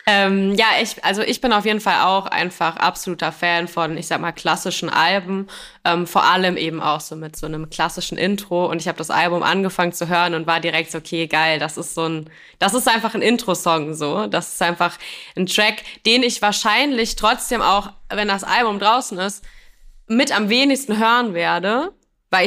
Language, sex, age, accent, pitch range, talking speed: German, female, 20-39, German, 175-215 Hz, 200 wpm